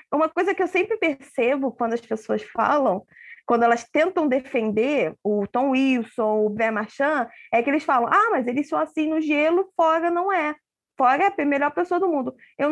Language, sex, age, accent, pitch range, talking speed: Portuguese, female, 20-39, Brazilian, 235-320 Hz, 205 wpm